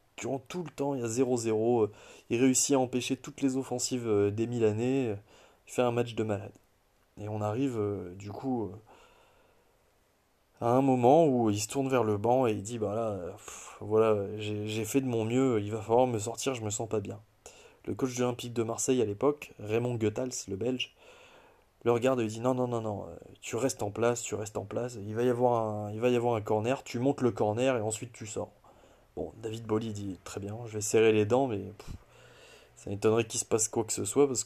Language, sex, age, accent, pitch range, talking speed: French, male, 20-39, French, 105-130 Hz, 230 wpm